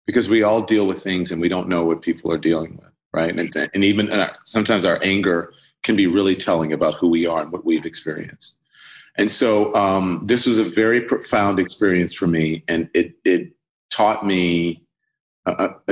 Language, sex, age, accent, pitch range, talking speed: English, male, 40-59, American, 85-100 Hz, 195 wpm